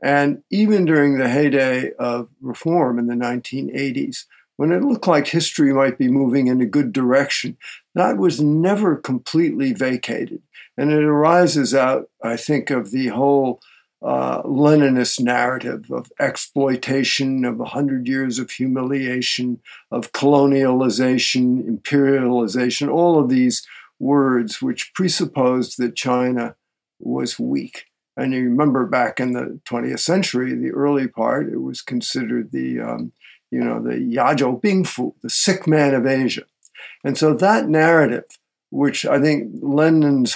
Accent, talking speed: American, 140 wpm